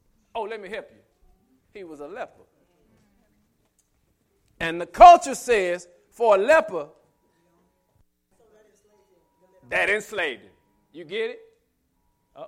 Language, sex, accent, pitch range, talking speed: English, male, American, 215-320 Hz, 110 wpm